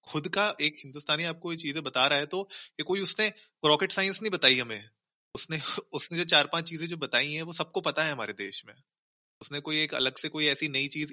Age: 20-39